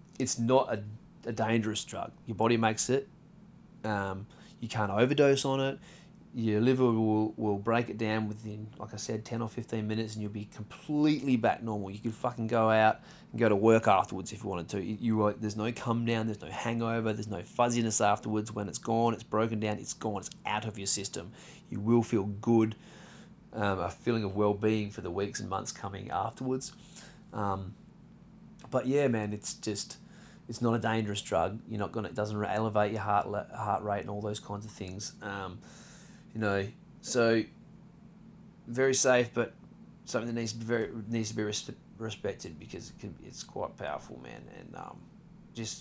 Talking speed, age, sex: 195 wpm, 30-49, male